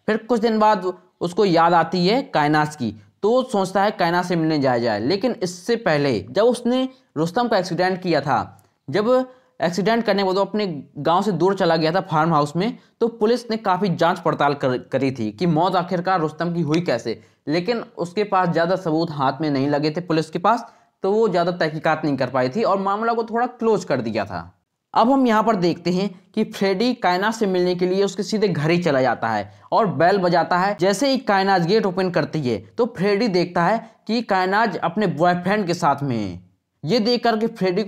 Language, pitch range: Hindi, 155-210 Hz